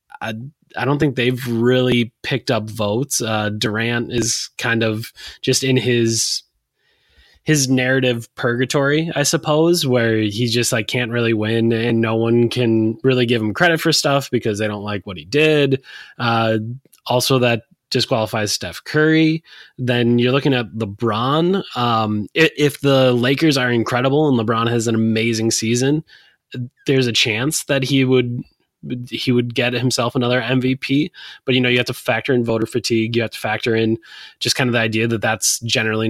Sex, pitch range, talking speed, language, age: male, 115-135 Hz, 175 wpm, English, 20-39